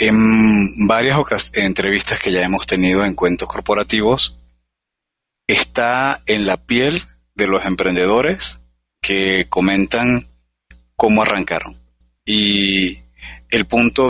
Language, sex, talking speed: Spanish, male, 105 wpm